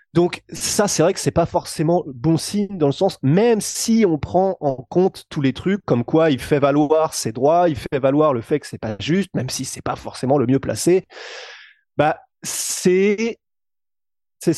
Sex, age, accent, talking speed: male, 20-39, French, 200 wpm